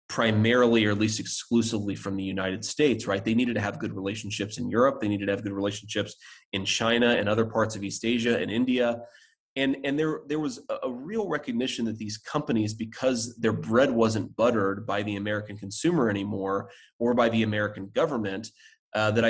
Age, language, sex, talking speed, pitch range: 30-49, English, male, 195 wpm, 105-125 Hz